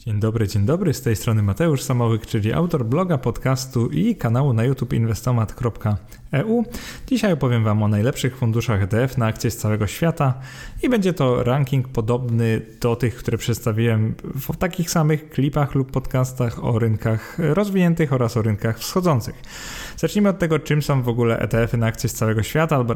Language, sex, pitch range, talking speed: Polish, male, 115-155 Hz, 175 wpm